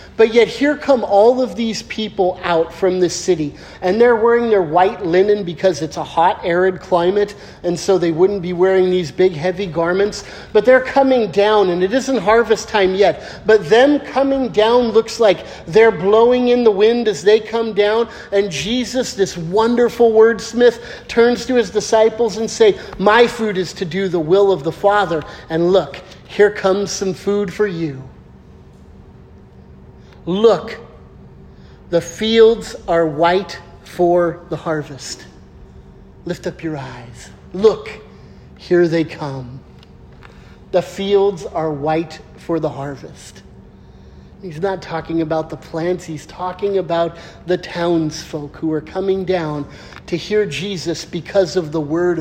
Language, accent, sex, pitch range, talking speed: English, American, male, 165-215 Hz, 155 wpm